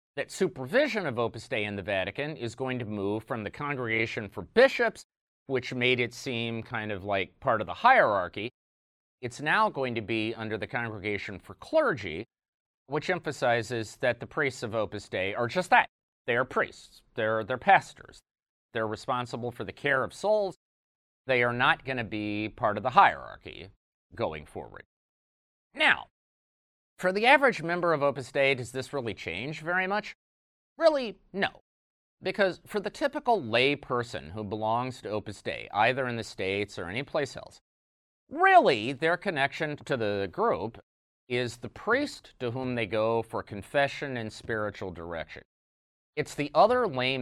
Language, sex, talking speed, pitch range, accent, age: English, male, 165 wpm, 110-150 Hz, American, 30-49